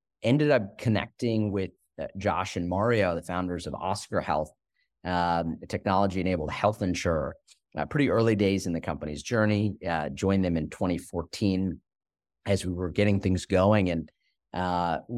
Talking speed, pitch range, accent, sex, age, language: 150 wpm, 85-105 Hz, American, male, 40-59, English